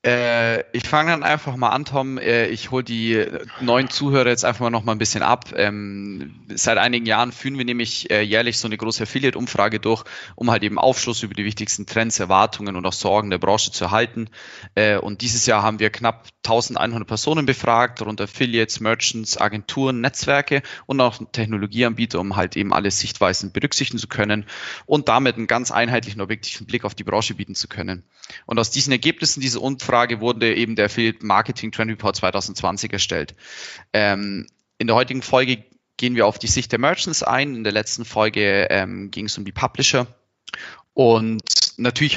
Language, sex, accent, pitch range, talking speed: German, male, German, 105-120 Hz, 185 wpm